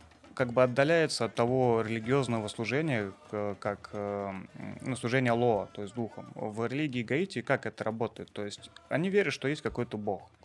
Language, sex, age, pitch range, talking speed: Russian, male, 20-39, 105-130 Hz, 160 wpm